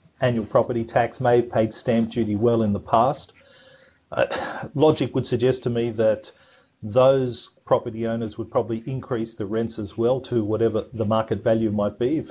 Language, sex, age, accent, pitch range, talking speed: English, male, 40-59, Australian, 105-125 Hz, 180 wpm